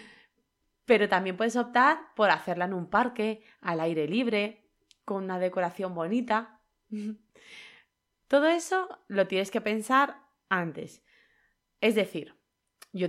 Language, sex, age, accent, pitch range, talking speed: Spanish, female, 20-39, Spanish, 180-250 Hz, 120 wpm